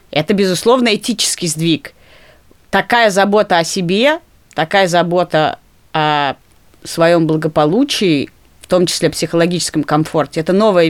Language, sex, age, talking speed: Russian, female, 30-49, 115 wpm